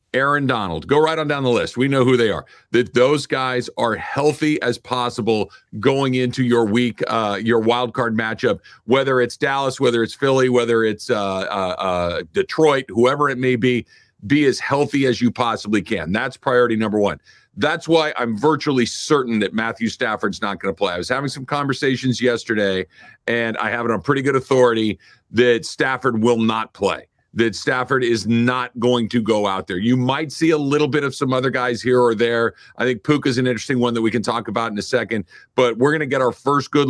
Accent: American